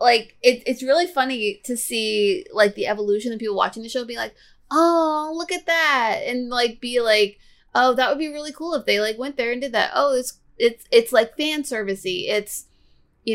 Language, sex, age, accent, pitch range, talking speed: English, female, 30-49, American, 210-250 Hz, 215 wpm